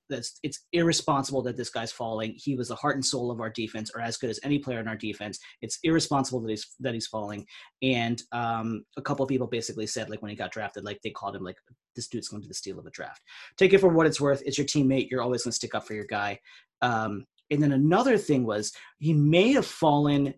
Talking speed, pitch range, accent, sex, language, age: 255 wpm, 115-155 Hz, American, male, English, 30-49